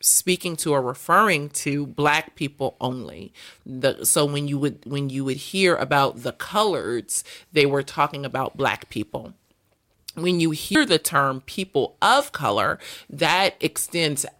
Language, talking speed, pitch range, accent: English, 150 wpm, 135-150 Hz, American